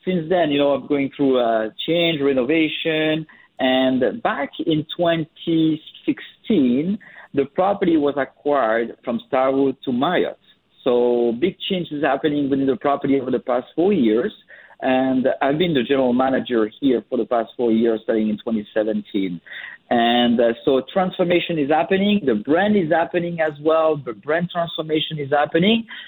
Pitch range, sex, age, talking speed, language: 130-160 Hz, male, 50-69, 155 wpm, English